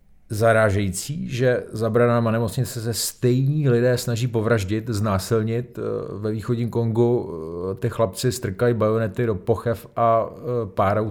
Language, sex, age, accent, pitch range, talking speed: Czech, male, 40-59, native, 95-115 Hz, 120 wpm